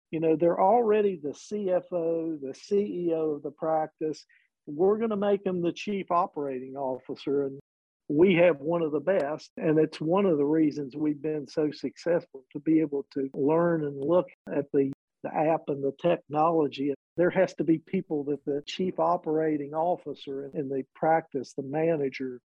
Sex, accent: male, American